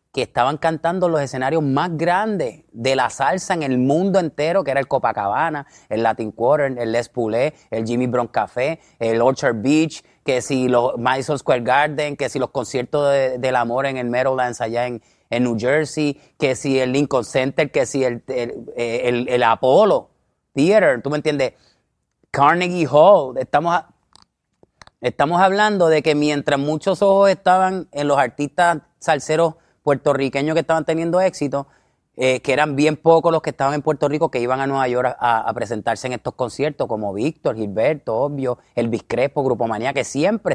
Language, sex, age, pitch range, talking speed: English, male, 30-49, 120-155 Hz, 175 wpm